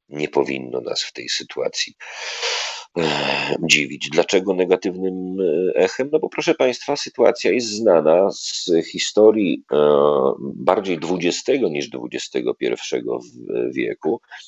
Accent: native